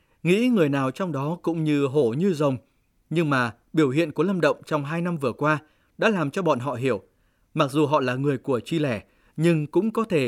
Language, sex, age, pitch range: Vietnamese, male, 20-39, 130-175 Hz